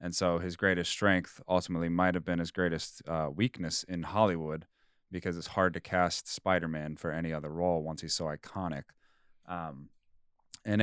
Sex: male